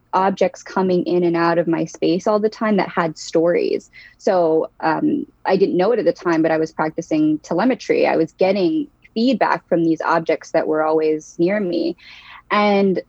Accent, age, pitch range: American, 20-39, 165-205 Hz